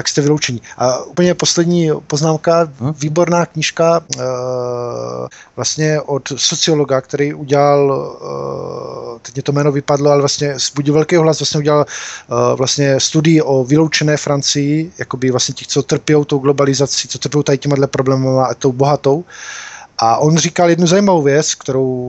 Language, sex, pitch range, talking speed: Czech, male, 135-160 Hz, 145 wpm